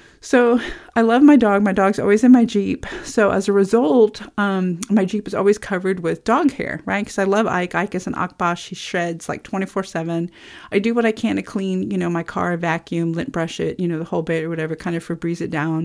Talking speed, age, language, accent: 240 wpm, 40-59, English, American